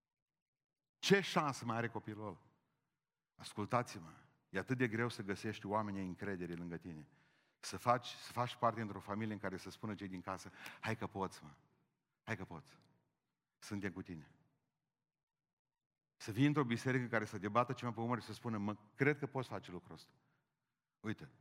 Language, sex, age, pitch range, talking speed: Romanian, male, 40-59, 105-140 Hz, 175 wpm